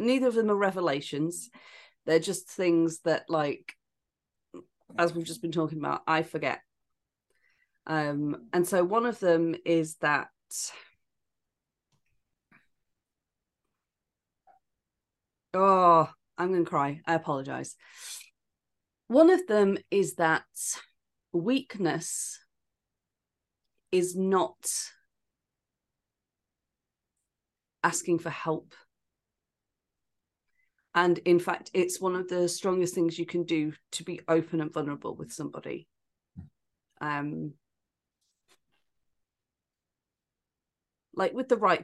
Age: 30-49